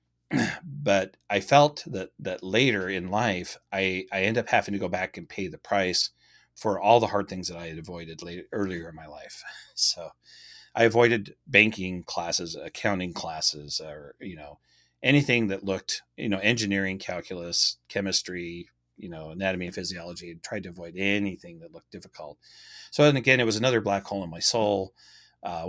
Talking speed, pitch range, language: 180 wpm, 85-110 Hz, English